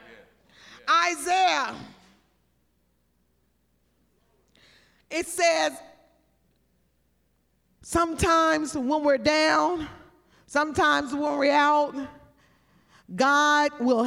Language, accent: English, American